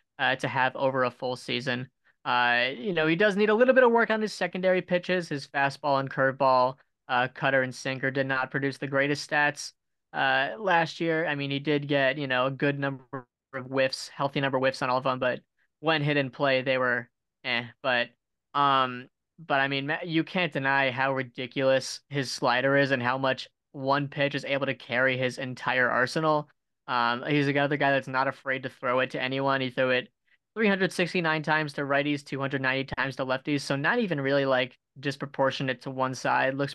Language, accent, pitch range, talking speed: English, American, 130-145 Hz, 205 wpm